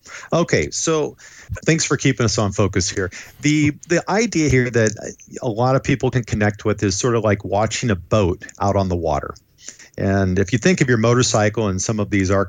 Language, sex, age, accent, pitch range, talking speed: English, male, 40-59, American, 100-135 Hz, 210 wpm